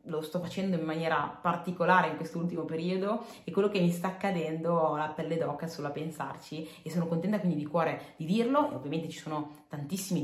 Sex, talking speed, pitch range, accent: female, 205 wpm, 150-180 Hz, native